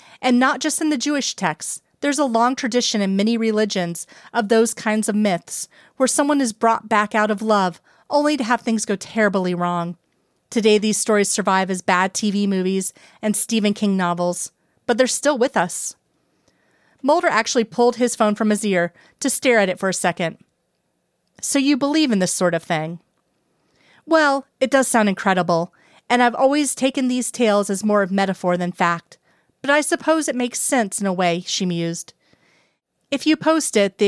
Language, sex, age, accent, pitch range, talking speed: English, female, 30-49, American, 185-245 Hz, 190 wpm